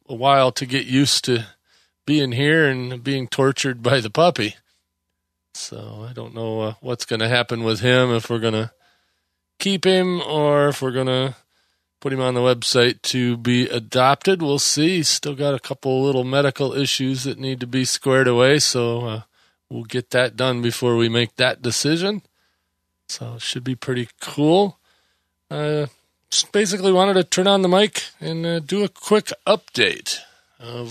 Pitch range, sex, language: 120-160 Hz, male, English